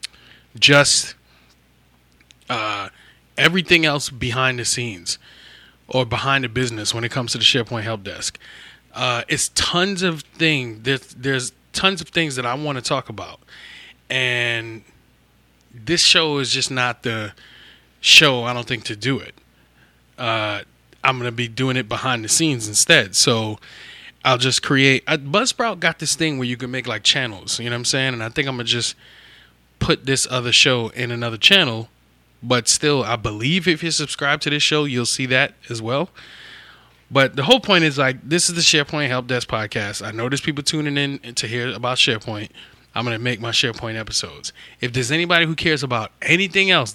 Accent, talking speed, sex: American, 185 wpm, male